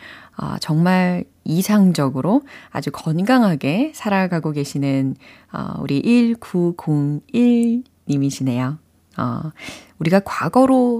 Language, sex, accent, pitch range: Korean, female, native, 145-195 Hz